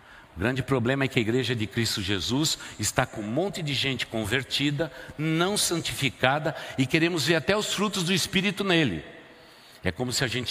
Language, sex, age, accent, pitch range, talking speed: Portuguese, male, 60-79, Brazilian, 100-145 Hz, 190 wpm